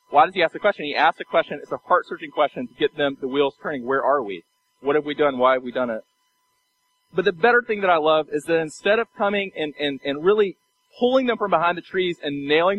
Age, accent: 30-49, American